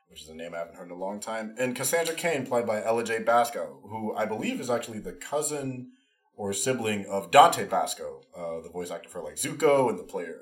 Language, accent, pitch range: English, American, 100-155 Hz